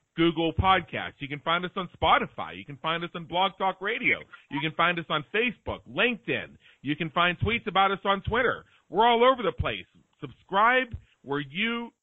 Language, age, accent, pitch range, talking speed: English, 40-59, American, 140-185 Hz, 195 wpm